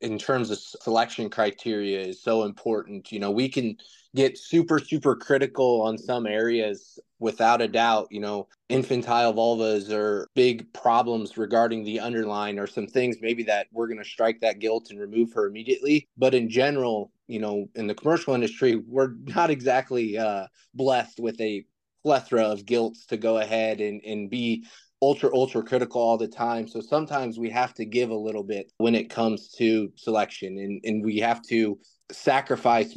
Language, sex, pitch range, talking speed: English, male, 110-120 Hz, 180 wpm